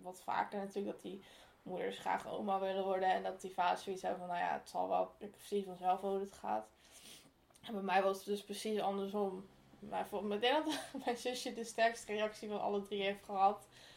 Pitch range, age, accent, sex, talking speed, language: 200-240 Hz, 10-29, Dutch, female, 210 wpm, Dutch